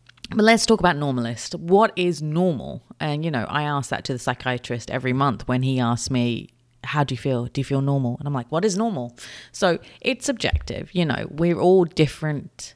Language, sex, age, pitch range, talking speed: English, female, 30-49, 125-160 Hz, 210 wpm